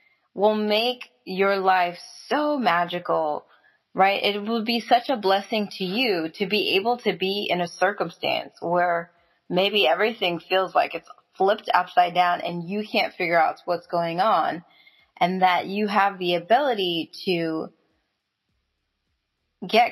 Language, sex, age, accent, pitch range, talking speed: English, female, 20-39, American, 170-205 Hz, 145 wpm